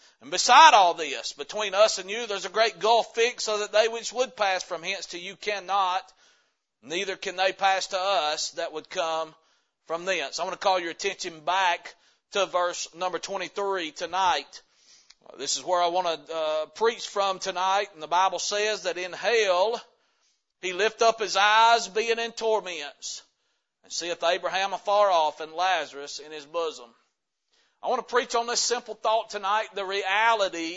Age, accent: 40-59, American